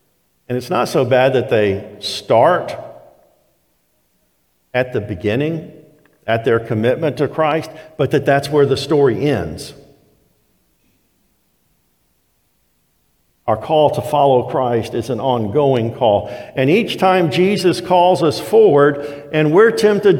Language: English